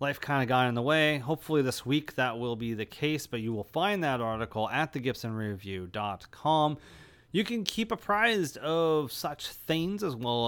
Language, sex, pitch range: English, male, 115-175 Hz